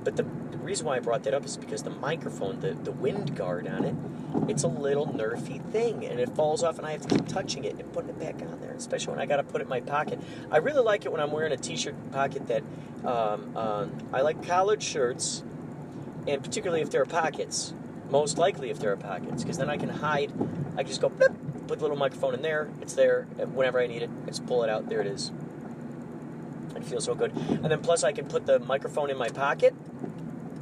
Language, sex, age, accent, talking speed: English, male, 40-59, American, 245 wpm